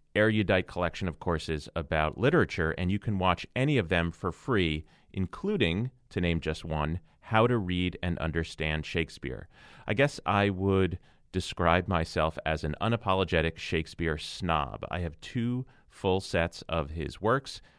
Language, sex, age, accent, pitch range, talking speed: English, male, 30-49, American, 80-100 Hz, 150 wpm